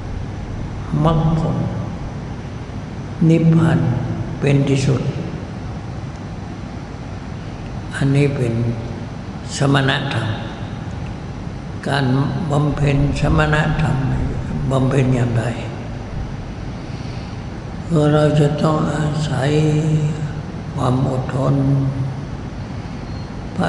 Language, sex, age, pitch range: Thai, male, 60-79, 130-150 Hz